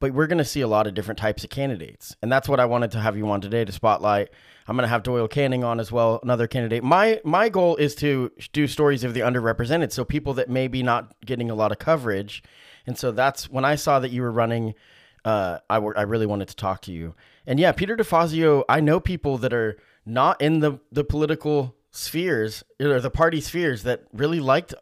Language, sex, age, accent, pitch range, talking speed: English, male, 30-49, American, 110-140 Hz, 235 wpm